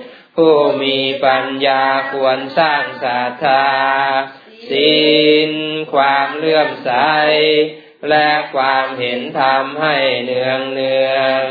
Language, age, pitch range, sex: Thai, 20-39, 135-155 Hz, male